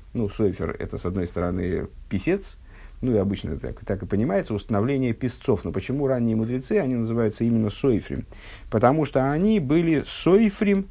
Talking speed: 160 wpm